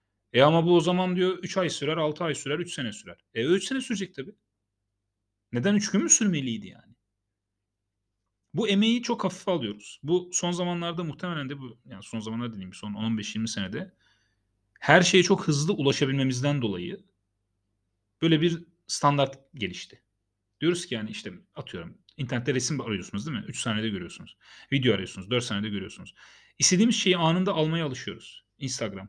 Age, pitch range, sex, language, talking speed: 40-59, 105-155 Hz, male, Turkish, 160 wpm